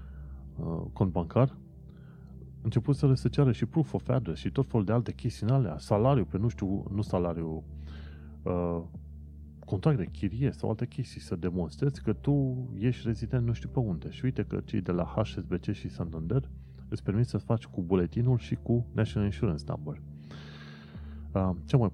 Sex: male